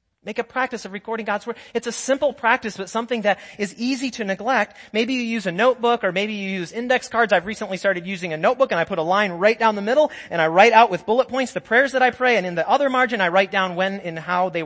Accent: American